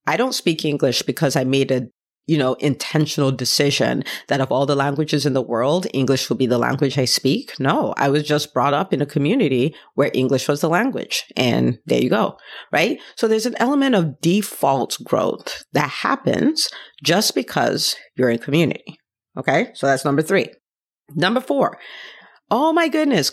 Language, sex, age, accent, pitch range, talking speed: English, female, 40-59, American, 140-185 Hz, 180 wpm